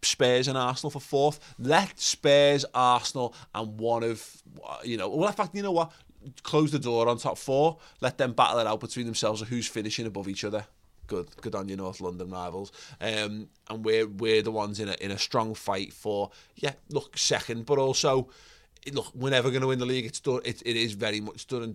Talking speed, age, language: 220 wpm, 20-39, English